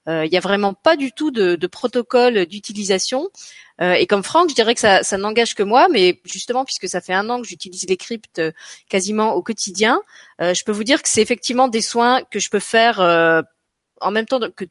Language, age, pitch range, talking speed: French, 30-49, 185-250 Hz, 235 wpm